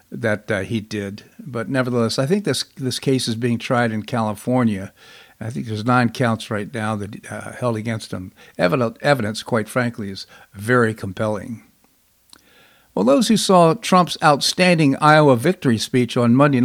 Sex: male